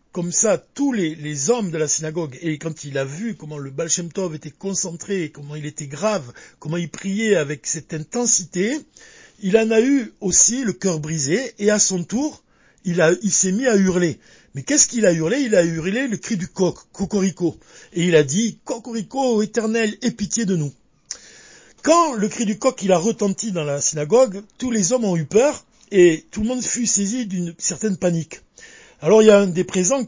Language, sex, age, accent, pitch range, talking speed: French, male, 60-79, French, 165-230 Hz, 210 wpm